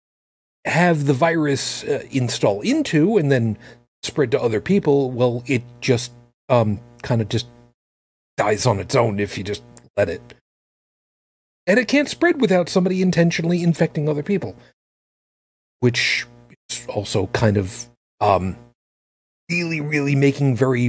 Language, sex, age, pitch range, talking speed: English, male, 40-59, 105-135 Hz, 135 wpm